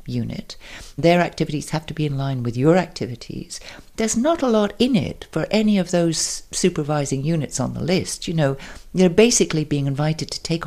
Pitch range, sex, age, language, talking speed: 130-170 Hz, female, 60-79, English, 190 wpm